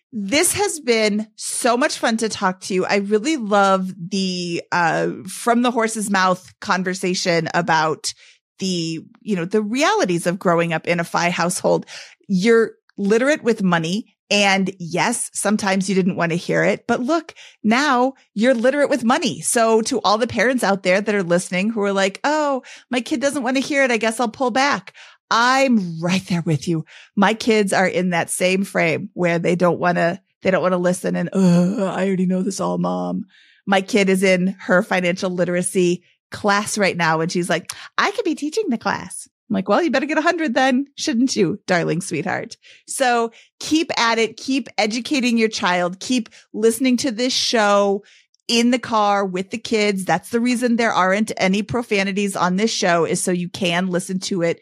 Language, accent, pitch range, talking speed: English, American, 180-245 Hz, 195 wpm